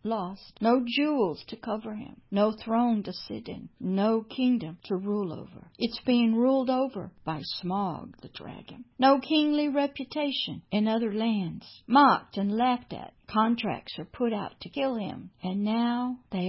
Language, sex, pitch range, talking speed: English, female, 200-255 Hz, 160 wpm